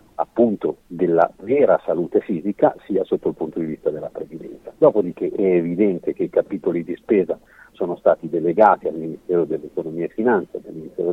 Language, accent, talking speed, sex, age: Italian, native, 165 wpm, male, 50-69